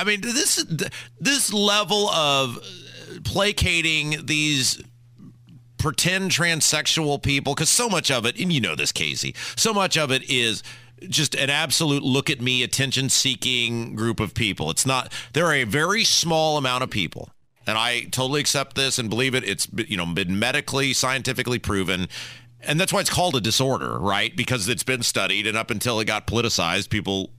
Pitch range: 115-155 Hz